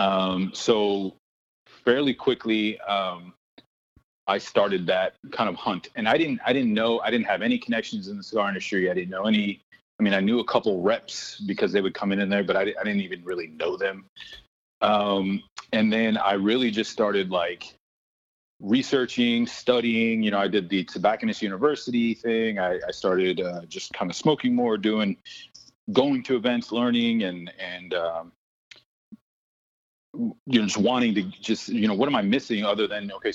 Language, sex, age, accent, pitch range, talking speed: English, male, 30-49, American, 95-115 Hz, 185 wpm